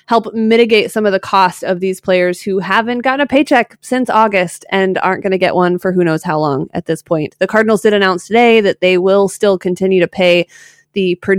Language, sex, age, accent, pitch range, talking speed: English, female, 20-39, American, 175-220 Hz, 230 wpm